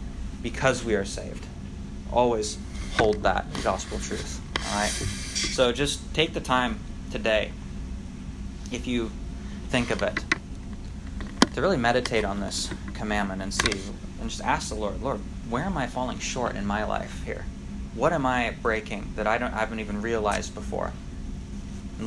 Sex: male